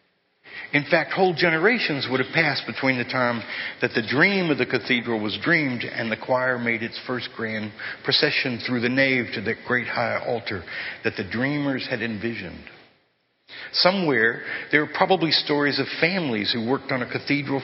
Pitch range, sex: 120-145 Hz, male